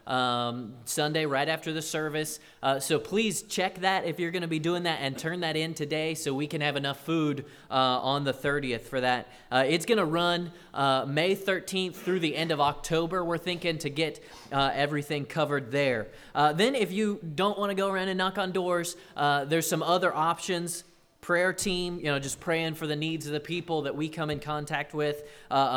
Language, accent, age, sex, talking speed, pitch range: English, American, 20-39, male, 210 wpm, 140-170 Hz